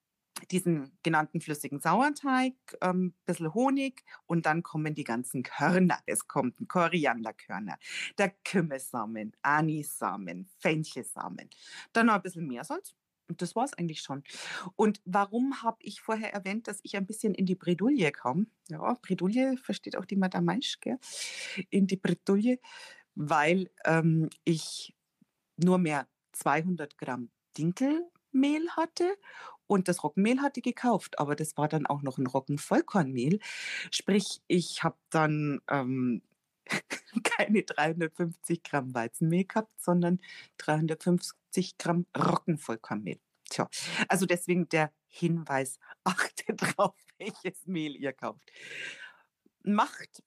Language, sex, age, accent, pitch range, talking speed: German, female, 40-59, German, 155-220 Hz, 125 wpm